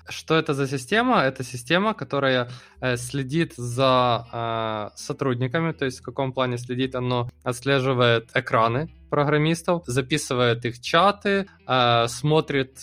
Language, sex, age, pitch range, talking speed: Russian, male, 20-39, 120-155 Hz, 120 wpm